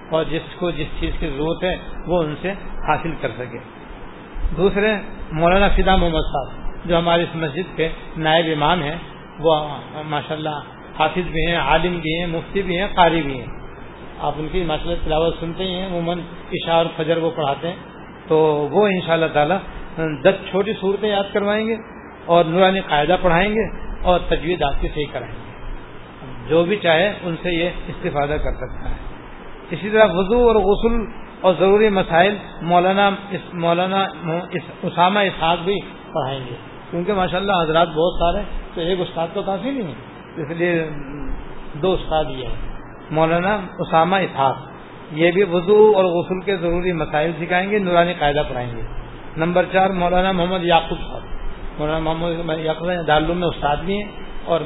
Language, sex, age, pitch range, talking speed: Urdu, male, 60-79, 155-185 Hz, 165 wpm